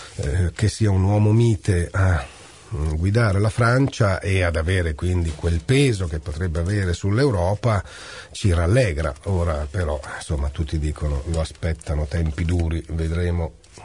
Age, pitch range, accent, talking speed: 40-59, 90-125 Hz, native, 135 wpm